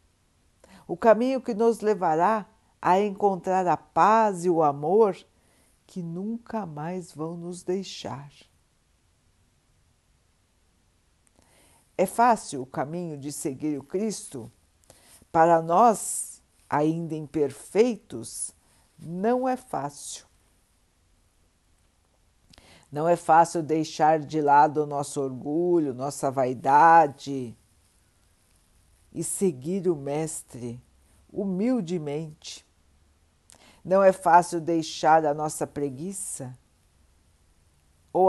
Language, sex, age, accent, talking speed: Portuguese, female, 60-79, Brazilian, 90 wpm